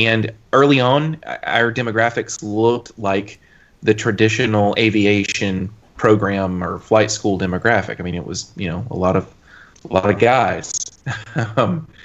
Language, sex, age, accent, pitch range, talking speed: English, male, 30-49, American, 100-130 Hz, 145 wpm